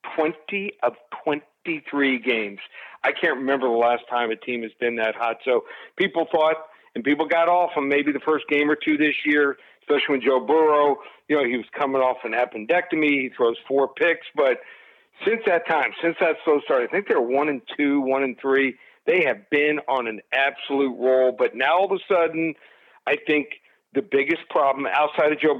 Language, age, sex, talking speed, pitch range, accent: English, 50-69, male, 200 wpm, 135-175 Hz, American